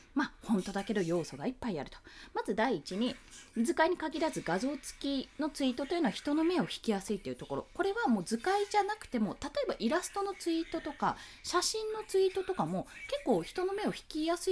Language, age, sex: Japanese, 20-39, female